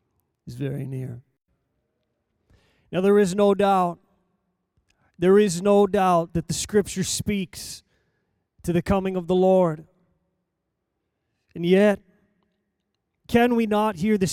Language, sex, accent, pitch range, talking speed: English, male, American, 170-210 Hz, 120 wpm